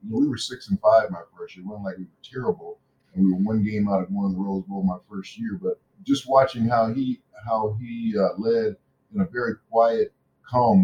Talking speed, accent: 255 wpm, American